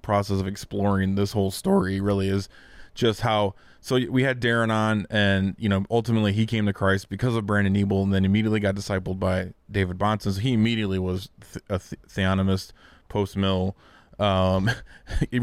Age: 20-39